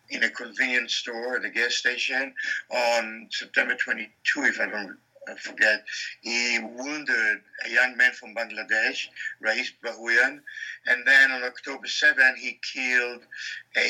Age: 60-79